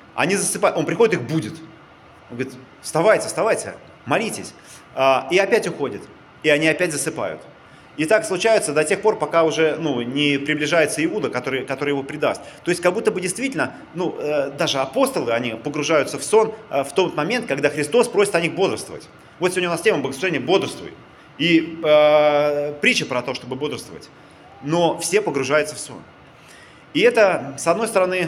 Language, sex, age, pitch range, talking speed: Russian, male, 30-49, 150-195 Hz, 170 wpm